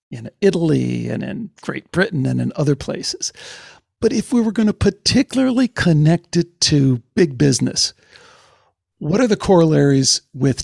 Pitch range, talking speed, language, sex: 130-180 Hz, 150 wpm, English, male